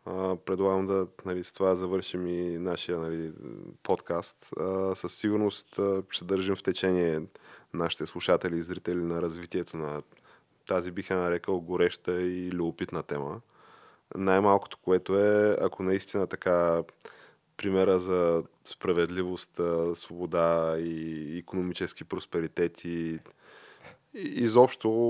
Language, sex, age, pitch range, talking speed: Bulgarian, male, 20-39, 85-95 Hz, 110 wpm